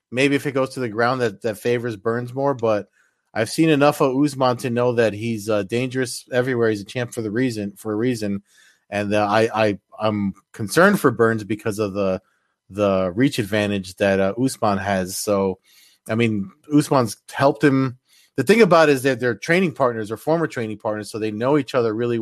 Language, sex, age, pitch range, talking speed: English, male, 30-49, 105-130 Hz, 210 wpm